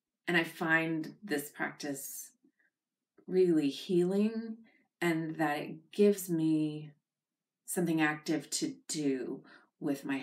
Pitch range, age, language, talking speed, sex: 145-220 Hz, 30-49, English, 105 wpm, female